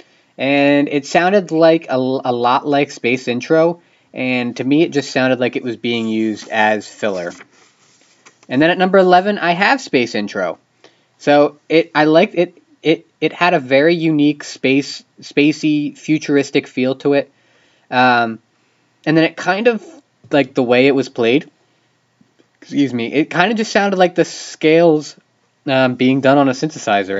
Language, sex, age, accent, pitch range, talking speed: English, male, 20-39, American, 125-160 Hz, 170 wpm